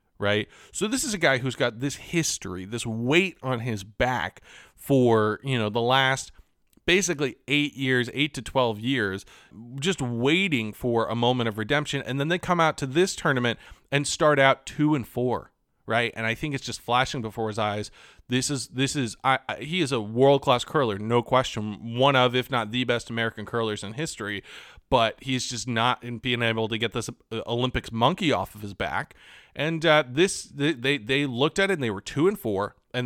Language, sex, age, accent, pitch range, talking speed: English, male, 30-49, American, 115-150 Hz, 200 wpm